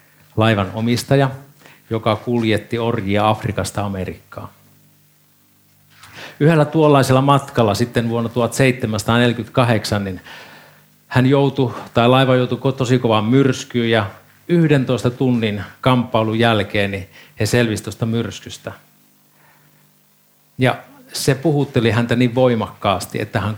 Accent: native